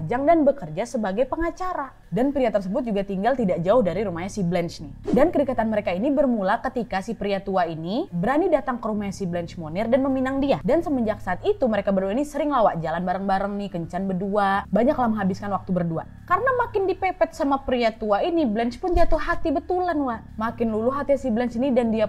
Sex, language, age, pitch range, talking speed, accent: female, Indonesian, 20-39, 195-300 Hz, 205 wpm, native